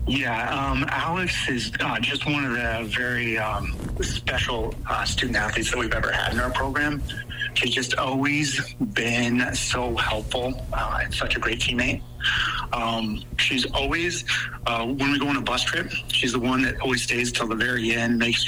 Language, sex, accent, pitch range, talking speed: English, male, American, 115-130 Hz, 180 wpm